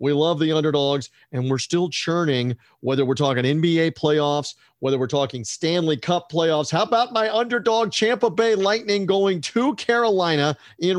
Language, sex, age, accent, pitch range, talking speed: English, male, 40-59, American, 130-170 Hz, 165 wpm